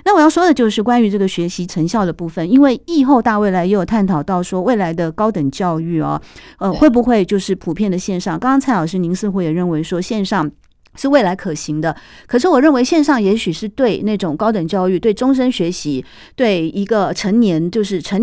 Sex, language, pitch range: female, Chinese, 180-255 Hz